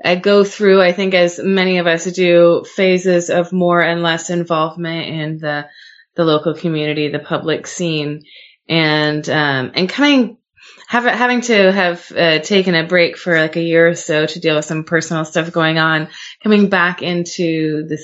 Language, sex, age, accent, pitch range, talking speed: English, female, 20-39, American, 160-195 Hz, 180 wpm